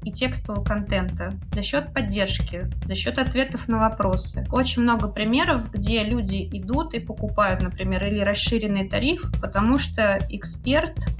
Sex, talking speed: female, 140 wpm